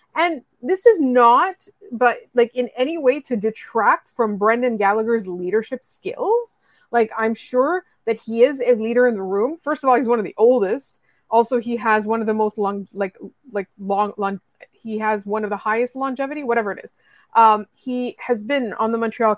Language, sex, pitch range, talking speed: English, female, 215-285 Hz, 200 wpm